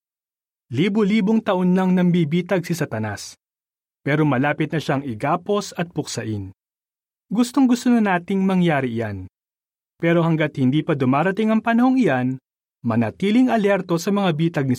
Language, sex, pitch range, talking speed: Filipino, male, 135-220 Hz, 130 wpm